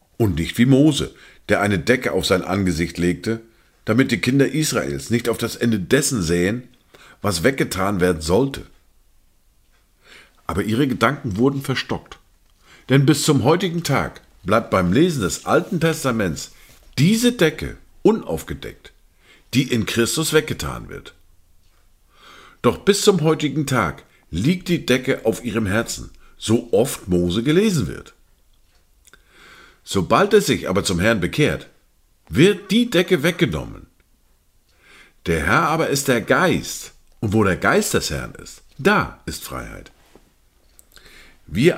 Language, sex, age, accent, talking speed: German, male, 50-69, German, 135 wpm